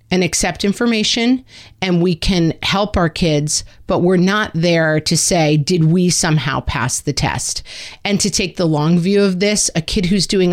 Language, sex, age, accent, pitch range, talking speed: English, female, 40-59, American, 160-200 Hz, 190 wpm